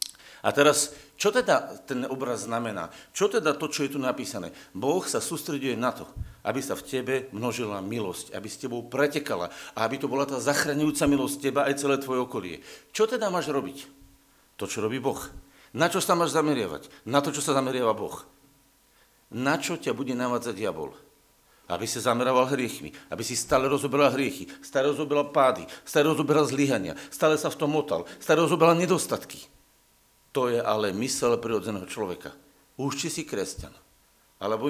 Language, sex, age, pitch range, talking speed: Slovak, male, 50-69, 130-180 Hz, 170 wpm